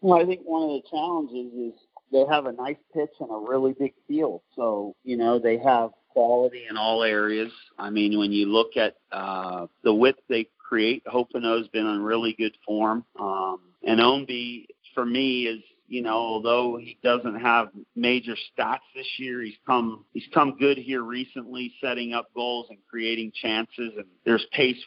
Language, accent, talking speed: English, American, 185 wpm